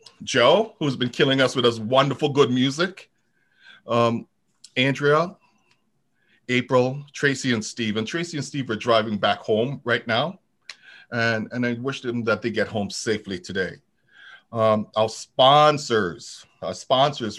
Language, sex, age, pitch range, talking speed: English, male, 40-59, 115-145 Hz, 145 wpm